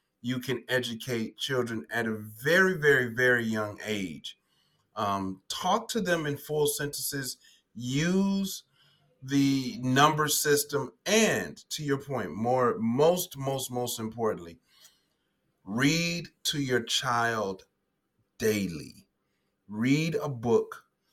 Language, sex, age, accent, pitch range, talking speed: English, male, 30-49, American, 115-150 Hz, 110 wpm